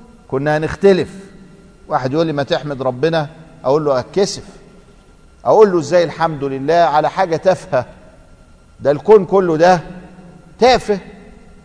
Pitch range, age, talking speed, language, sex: 135-200 Hz, 50-69, 125 wpm, Arabic, male